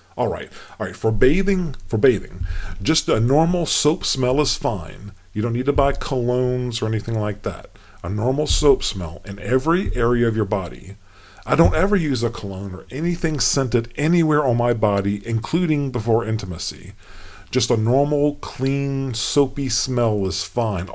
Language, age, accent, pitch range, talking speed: English, 40-59, American, 100-130 Hz, 165 wpm